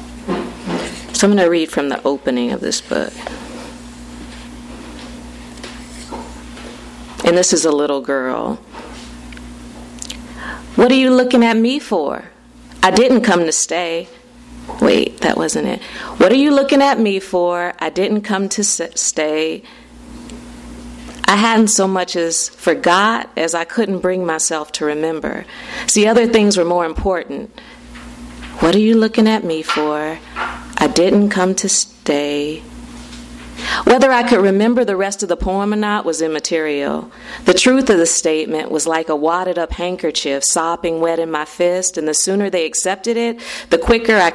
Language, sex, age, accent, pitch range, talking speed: English, female, 40-59, American, 150-205 Hz, 155 wpm